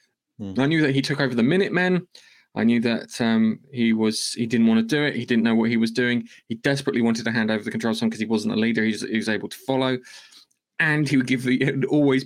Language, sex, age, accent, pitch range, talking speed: English, male, 20-39, British, 110-135 Hz, 265 wpm